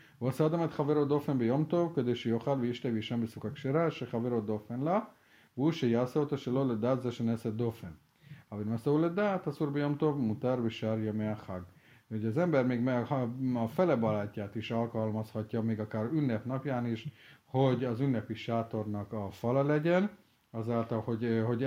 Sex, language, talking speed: male, Hungarian, 165 wpm